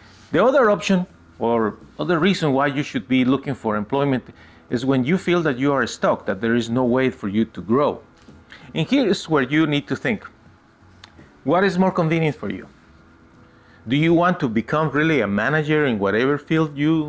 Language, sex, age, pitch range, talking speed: English, male, 40-59, 105-155 Hz, 195 wpm